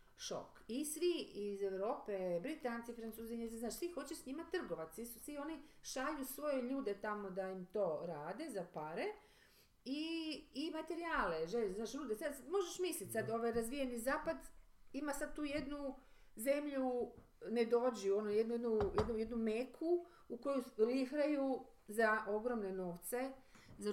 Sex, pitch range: female, 200-285 Hz